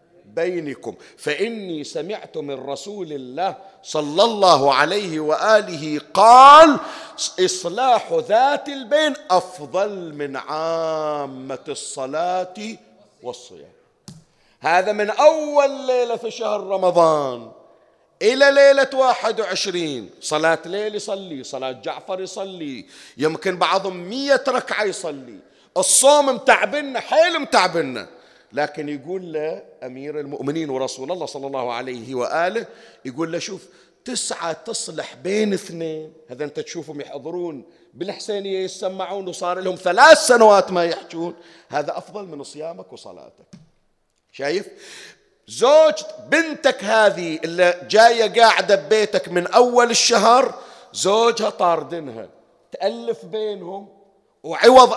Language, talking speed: Arabic, 105 wpm